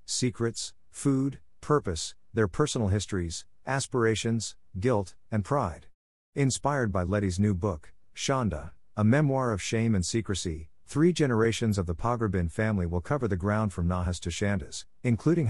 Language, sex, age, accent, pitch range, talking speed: English, male, 50-69, American, 90-115 Hz, 145 wpm